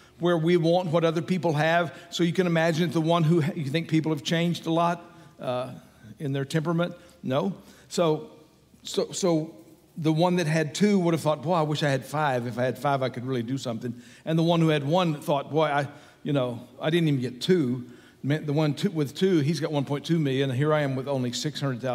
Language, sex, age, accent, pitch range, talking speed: English, male, 60-79, American, 145-180 Hz, 225 wpm